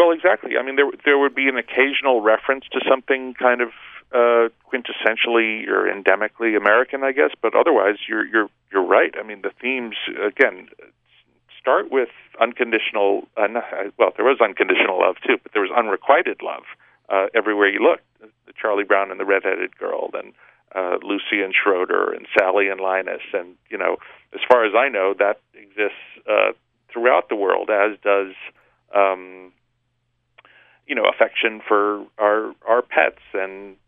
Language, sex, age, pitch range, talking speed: English, male, 50-69, 100-140 Hz, 165 wpm